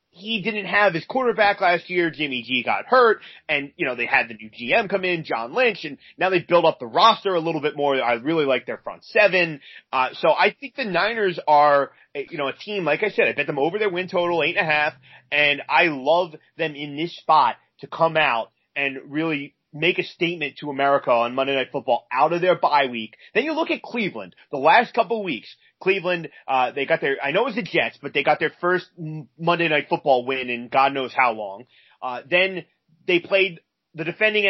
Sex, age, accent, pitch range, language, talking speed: male, 30-49, American, 145-200 Hz, English, 230 wpm